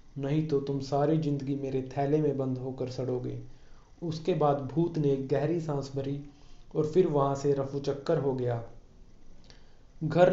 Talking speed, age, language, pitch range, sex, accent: 155 wpm, 30-49, Hindi, 135-155 Hz, male, native